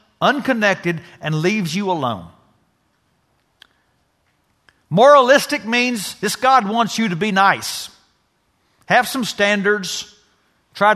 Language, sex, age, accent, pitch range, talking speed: English, male, 50-69, American, 160-240 Hz, 100 wpm